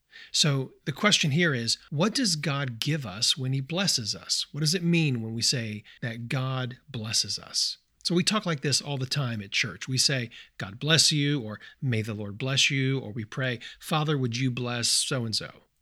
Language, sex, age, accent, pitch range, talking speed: English, male, 40-59, American, 120-155 Hz, 205 wpm